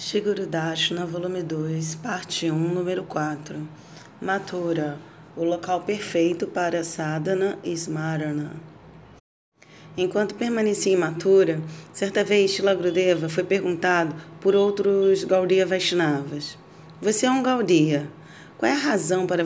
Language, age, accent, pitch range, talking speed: Portuguese, 30-49, Brazilian, 165-200 Hz, 110 wpm